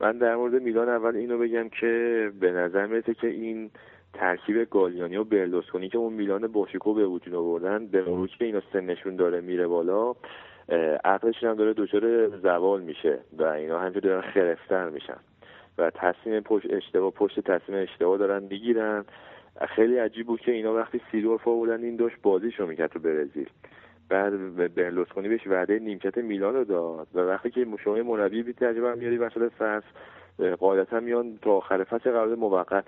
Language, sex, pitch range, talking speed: Persian, male, 95-115 Hz, 170 wpm